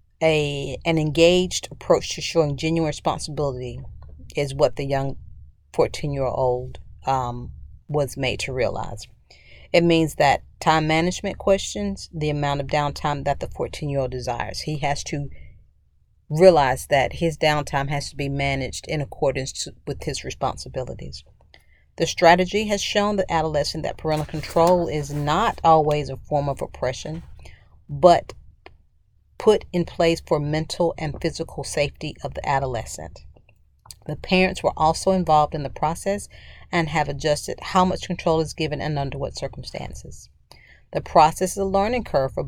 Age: 40-59